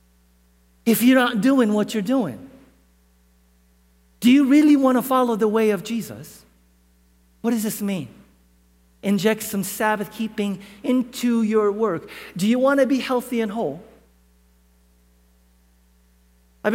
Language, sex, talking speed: English, male, 135 wpm